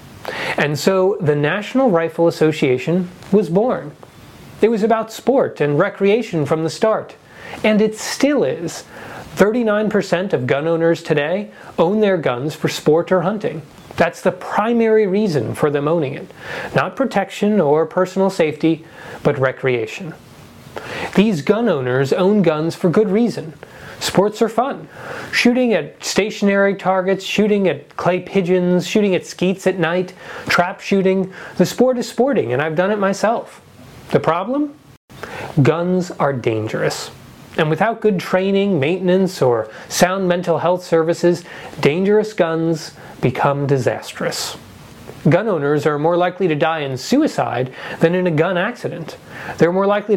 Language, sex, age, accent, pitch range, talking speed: English, male, 30-49, American, 160-210 Hz, 140 wpm